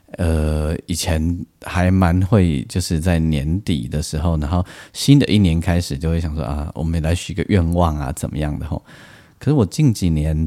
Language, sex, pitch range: Chinese, male, 80-95 Hz